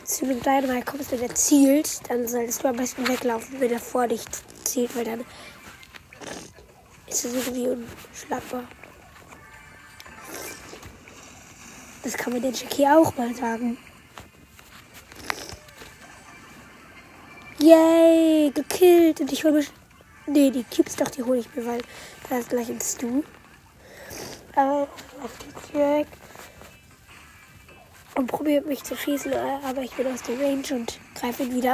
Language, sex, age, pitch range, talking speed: German, female, 20-39, 250-295 Hz, 130 wpm